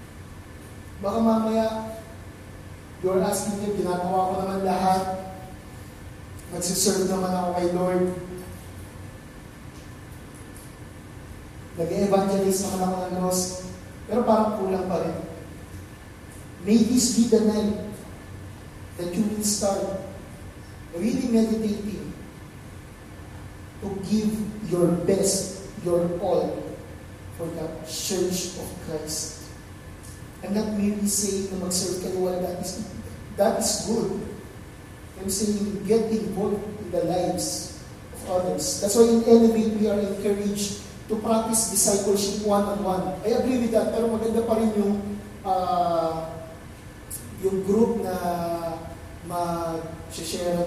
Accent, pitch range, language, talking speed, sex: Filipino, 165-210 Hz, English, 115 wpm, male